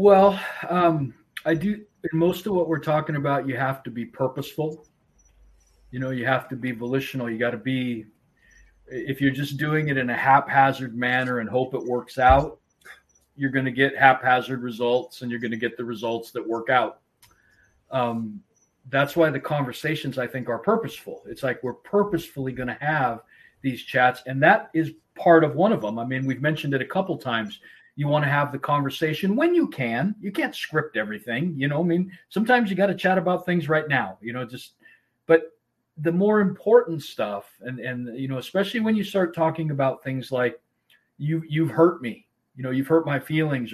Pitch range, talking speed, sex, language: 125-160 Hz, 200 wpm, male, English